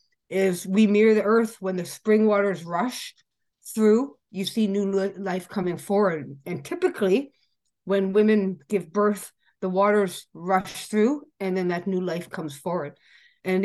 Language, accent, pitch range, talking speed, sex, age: English, American, 175-215 Hz, 155 wpm, female, 50-69